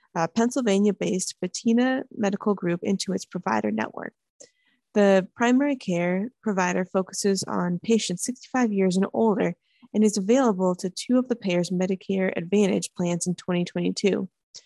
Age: 20-39